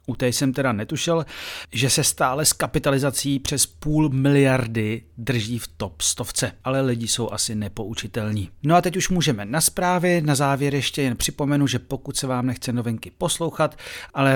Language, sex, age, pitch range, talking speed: Czech, male, 40-59, 115-140 Hz, 175 wpm